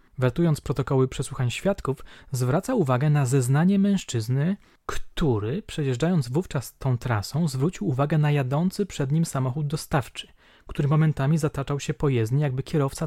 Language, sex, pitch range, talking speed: Polish, male, 125-160 Hz, 135 wpm